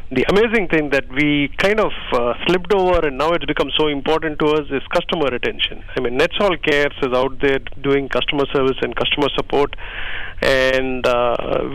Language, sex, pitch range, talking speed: English, male, 125-150 Hz, 185 wpm